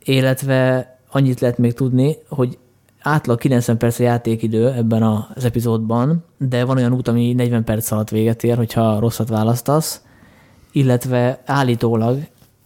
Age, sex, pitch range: 20-39, male, 115-130 Hz